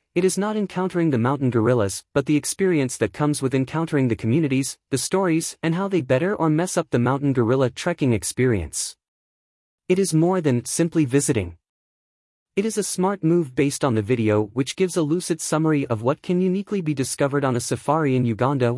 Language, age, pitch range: English, 30-49, 115-165 Hz